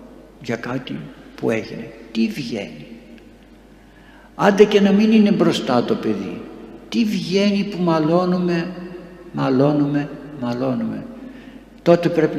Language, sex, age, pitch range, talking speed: Greek, male, 60-79, 130-175 Hz, 105 wpm